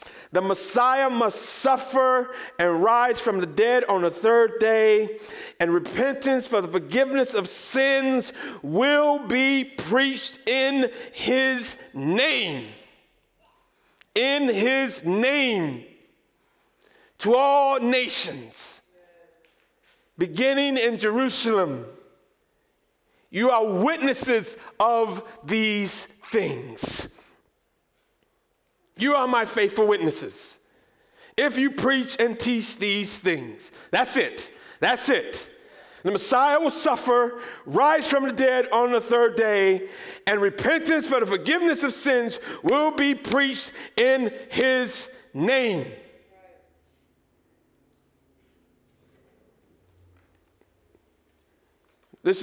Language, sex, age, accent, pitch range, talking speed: English, male, 50-69, American, 210-275 Hz, 95 wpm